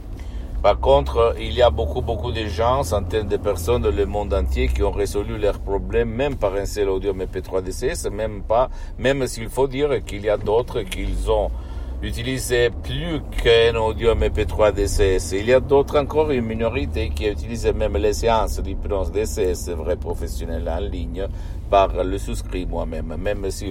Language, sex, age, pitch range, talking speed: Italian, male, 50-69, 80-95 Hz, 180 wpm